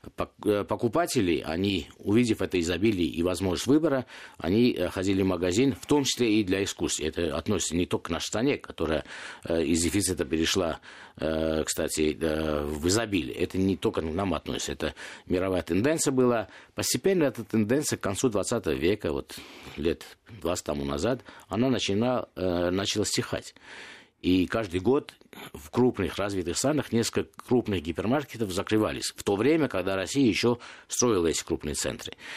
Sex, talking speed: male, 150 wpm